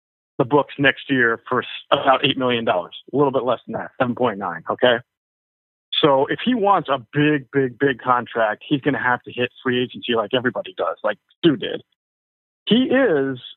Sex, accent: male, American